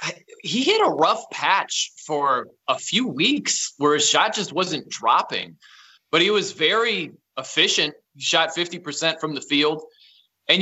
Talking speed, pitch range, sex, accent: 155 wpm, 145-175 Hz, male, American